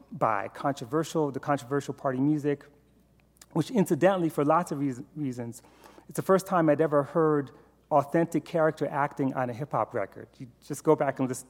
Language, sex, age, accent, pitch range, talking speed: English, male, 40-59, American, 135-170 Hz, 170 wpm